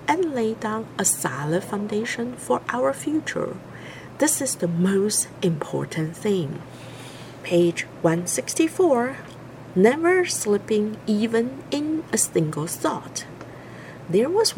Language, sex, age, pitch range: Chinese, female, 50-69, 170-285 Hz